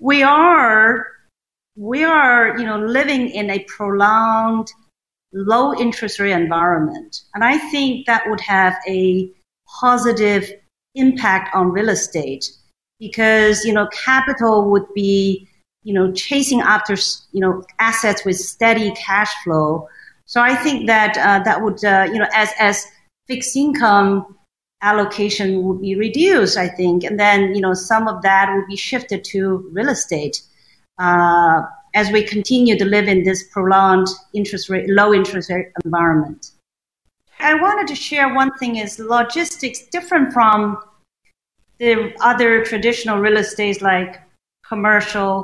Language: English